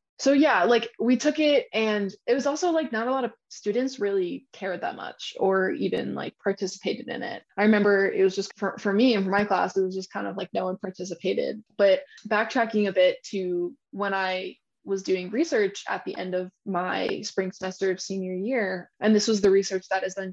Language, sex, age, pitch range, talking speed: English, female, 20-39, 190-225 Hz, 220 wpm